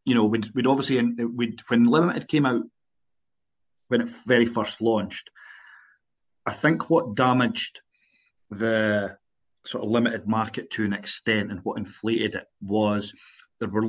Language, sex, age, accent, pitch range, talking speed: English, male, 30-49, British, 100-115 Hz, 145 wpm